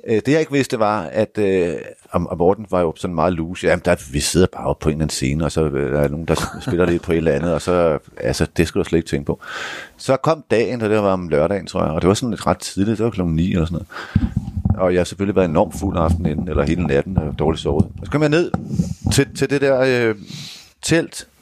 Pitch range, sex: 95-140 Hz, male